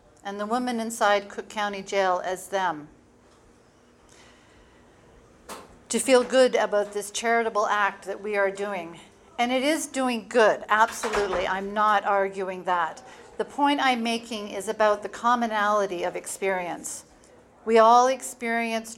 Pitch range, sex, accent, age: 200-235 Hz, female, American, 40-59